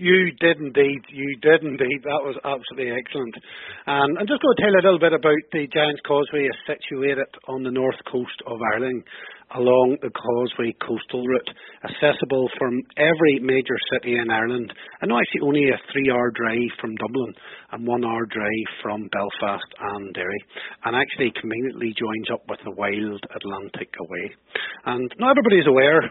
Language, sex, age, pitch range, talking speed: English, male, 40-59, 120-145 Hz, 170 wpm